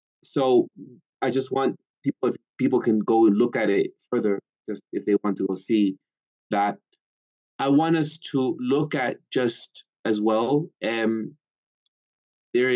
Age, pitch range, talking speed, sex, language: 20-39, 100-130 Hz, 155 wpm, male, English